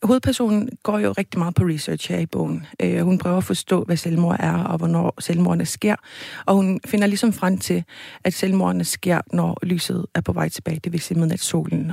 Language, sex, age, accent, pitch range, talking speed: Danish, female, 40-59, native, 165-180 Hz, 210 wpm